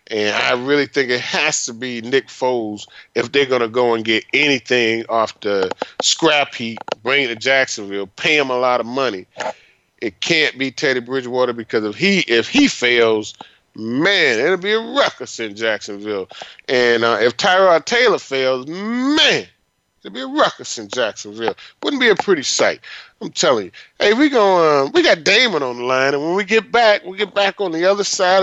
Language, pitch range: English, 125-190 Hz